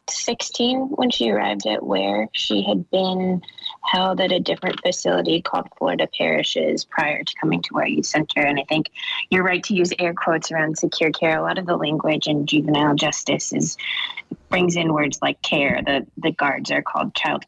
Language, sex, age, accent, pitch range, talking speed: English, female, 20-39, American, 150-190 Hz, 190 wpm